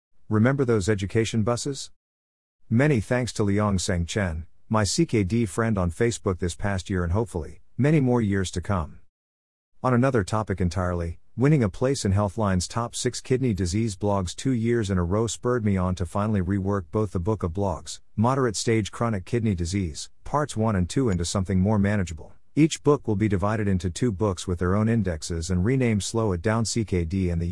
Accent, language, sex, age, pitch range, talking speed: American, English, male, 50-69, 90-115 Hz, 190 wpm